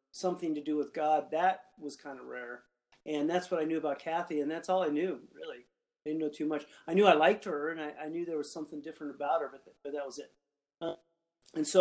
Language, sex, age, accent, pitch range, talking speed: English, male, 40-59, American, 145-175 Hz, 260 wpm